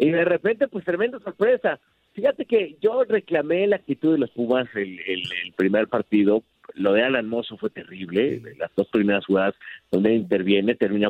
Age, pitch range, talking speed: 50-69, 110-170 Hz, 180 wpm